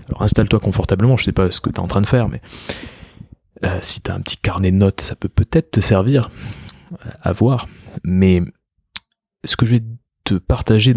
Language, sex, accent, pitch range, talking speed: French, male, French, 95-120 Hz, 215 wpm